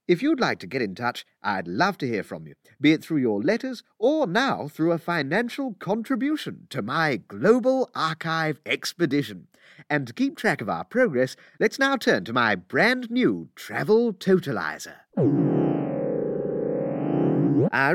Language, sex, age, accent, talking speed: English, male, 40-59, British, 155 wpm